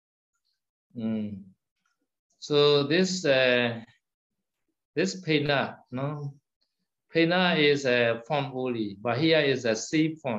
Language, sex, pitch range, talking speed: Vietnamese, male, 115-145 Hz, 105 wpm